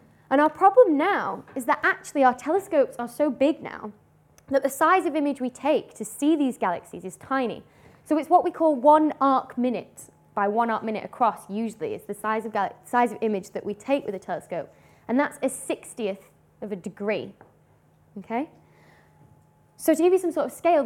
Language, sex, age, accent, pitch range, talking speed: English, female, 10-29, British, 220-305 Hz, 200 wpm